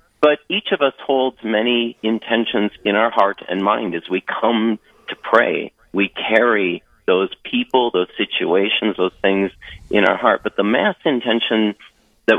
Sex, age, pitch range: male, 50-69, 100-130 Hz